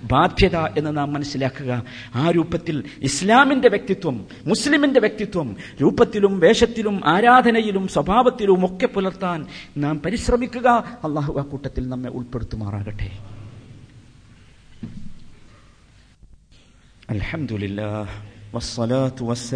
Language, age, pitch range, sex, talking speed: Malayalam, 50-69, 115-190 Hz, male, 70 wpm